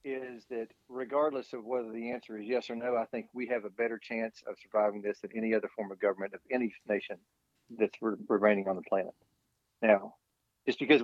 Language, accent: English, American